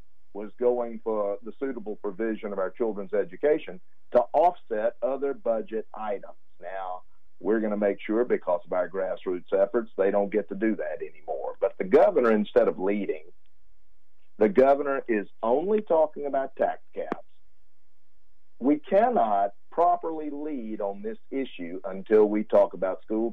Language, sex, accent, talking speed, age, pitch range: English, male, American, 150 wpm, 50-69, 100-135 Hz